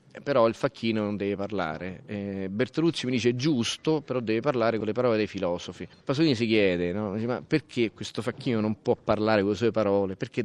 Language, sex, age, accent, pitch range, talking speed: Italian, male, 30-49, native, 100-135 Hz, 200 wpm